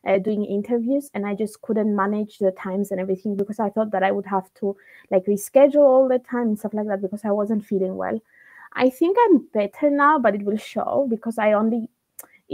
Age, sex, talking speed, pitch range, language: 20-39, female, 220 wpm, 200-250 Hz, English